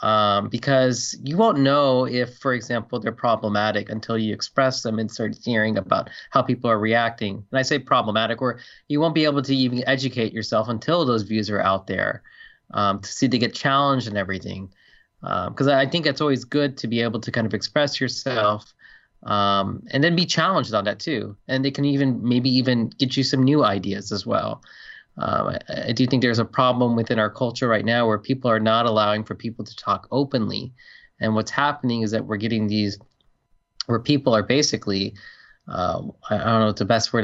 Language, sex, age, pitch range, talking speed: English, male, 20-39, 110-130 Hz, 205 wpm